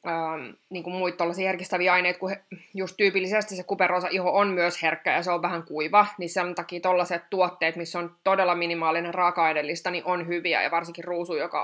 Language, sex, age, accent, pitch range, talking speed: Finnish, female, 20-39, native, 170-190 Hz, 190 wpm